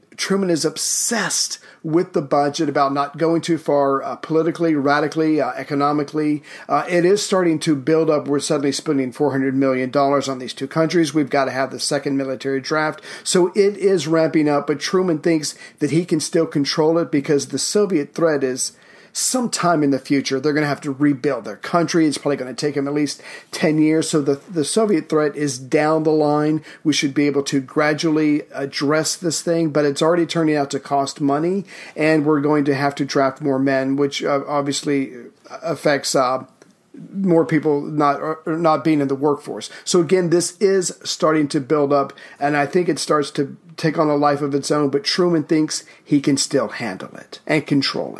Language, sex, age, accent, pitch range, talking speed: English, male, 40-59, American, 140-160 Hz, 200 wpm